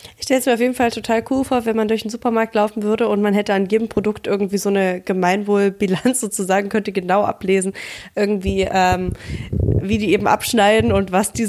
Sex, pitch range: female, 195-240 Hz